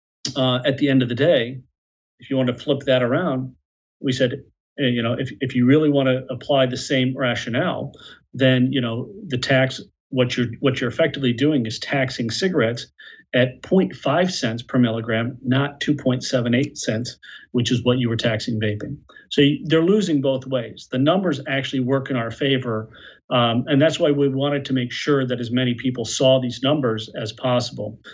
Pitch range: 125-140 Hz